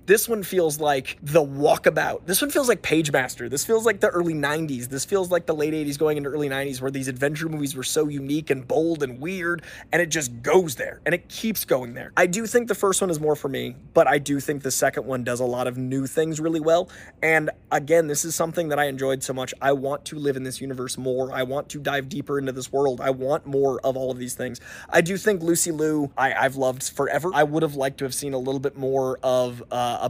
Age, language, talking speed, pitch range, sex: 20-39, English, 255 wpm, 130-160 Hz, male